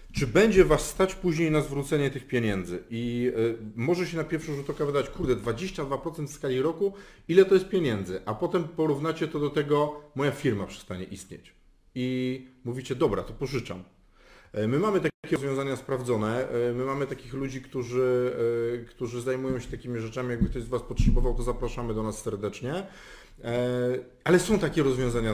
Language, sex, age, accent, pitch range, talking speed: Polish, male, 40-59, native, 125-150 Hz, 165 wpm